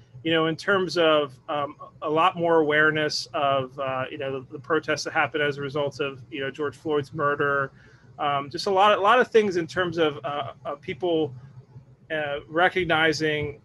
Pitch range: 140-165 Hz